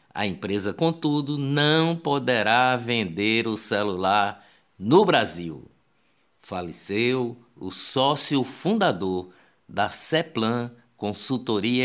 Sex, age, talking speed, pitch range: male, 50-69, 85 wpm, 110-150 Hz